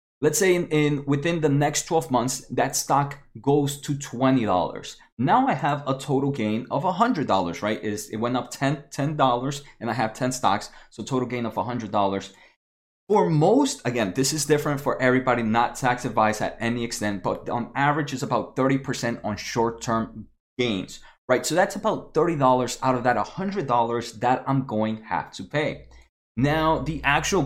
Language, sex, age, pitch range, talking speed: English, male, 20-39, 120-155 Hz, 180 wpm